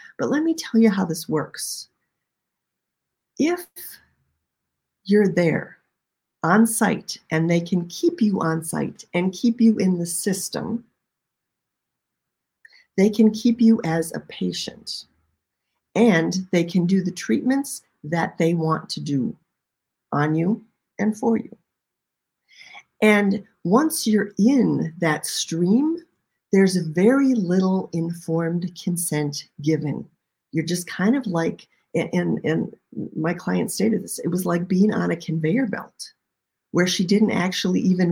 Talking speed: 135 wpm